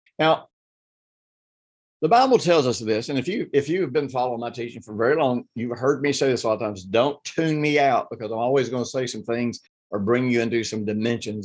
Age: 50-69